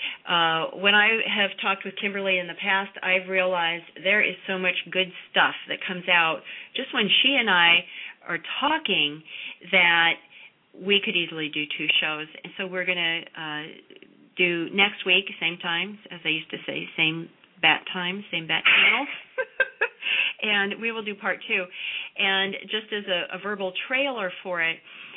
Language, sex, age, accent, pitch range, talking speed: English, female, 40-59, American, 165-200 Hz, 170 wpm